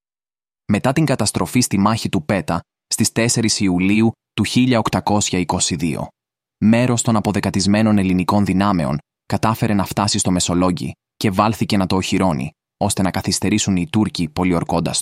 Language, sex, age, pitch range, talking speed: Greek, male, 20-39, 90-105 Hz, 130 wpm